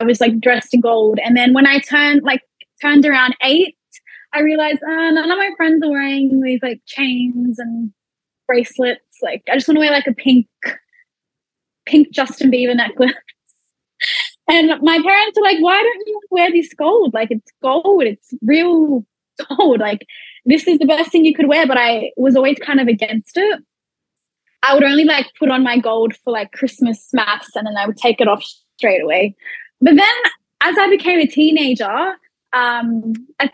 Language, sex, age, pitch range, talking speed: English, female, 10-29, 245-325 Hz, 190 wpm